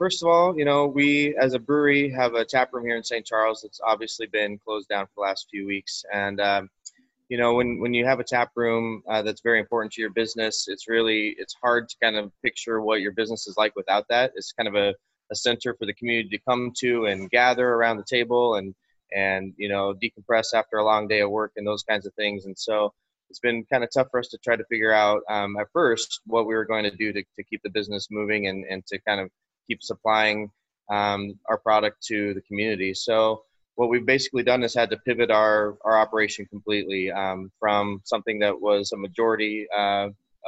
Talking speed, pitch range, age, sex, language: 230 wpm, 105-120 Hz, 20-39, male, English